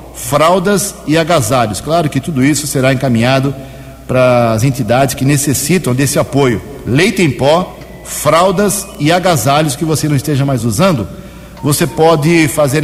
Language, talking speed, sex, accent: Portuguese, 145 wpm, male, Brazilian